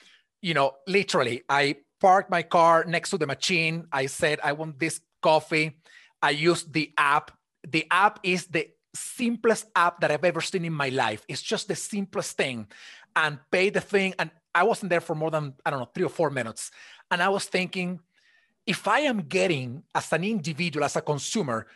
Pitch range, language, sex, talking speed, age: 150-195 Hz, English, male, 195 wpm, 30-49